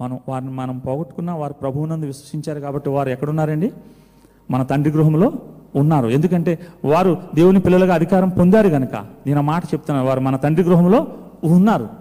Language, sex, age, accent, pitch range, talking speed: Telugu, male, 40-59, native, 135-180 Hz, 145 wpm